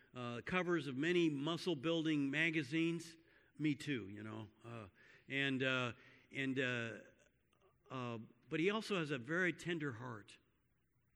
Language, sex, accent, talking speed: English, male, American, 135 wpm